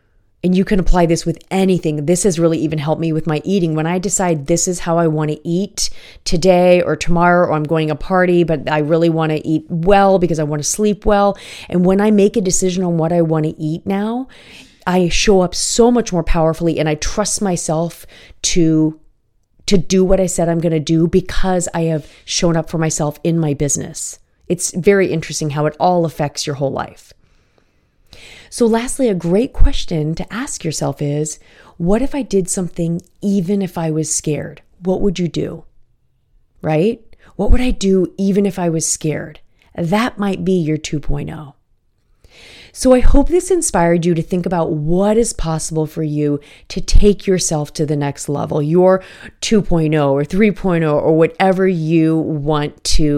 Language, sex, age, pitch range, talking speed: English, female, 30-49, 155-190 Hz, 190 wpm